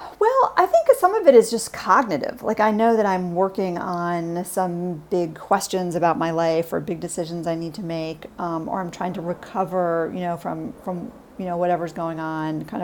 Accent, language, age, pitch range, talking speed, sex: American, English, 40-59, 175-225 Hz, 210 wpm, female